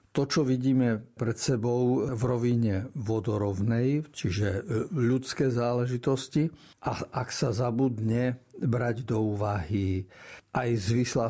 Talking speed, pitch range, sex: 105 wpm, 110-130 Hz, male